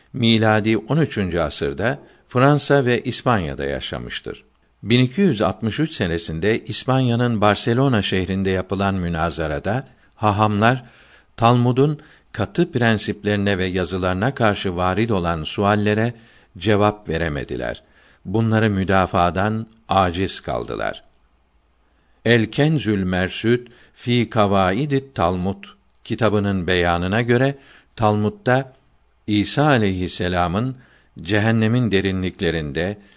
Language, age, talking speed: Turkish, 60-79, 80 wpm